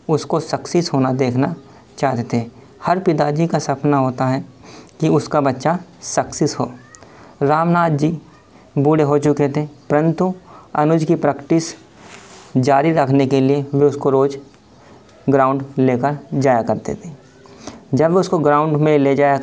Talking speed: 140 wpm